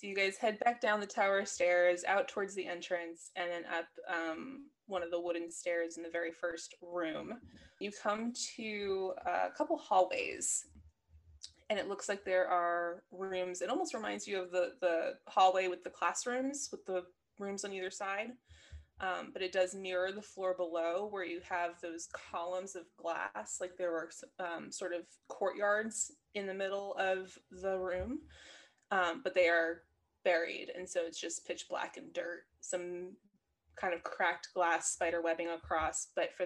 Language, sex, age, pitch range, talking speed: English, female, 20-39, 175-205 Hz, 180 wpm